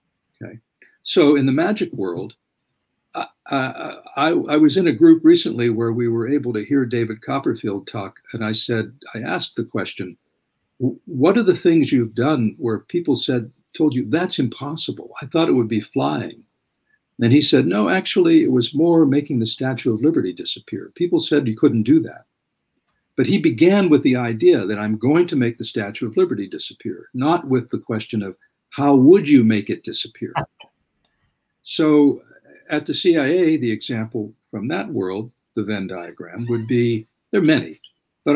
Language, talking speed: English, 180 wpm